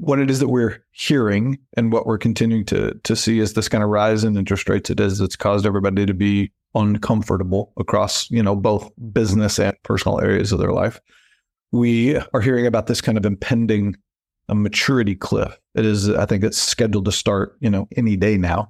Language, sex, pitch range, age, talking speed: English, male, 100-115 Hz, 40-59, 205 wpm